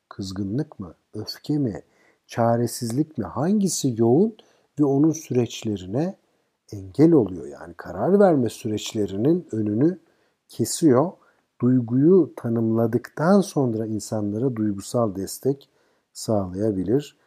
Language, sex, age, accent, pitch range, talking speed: Turkish, male, 50-69, native, 100-135 Hz, 90 wpm